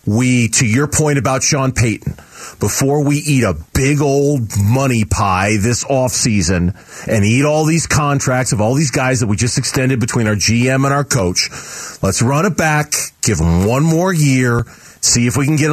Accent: American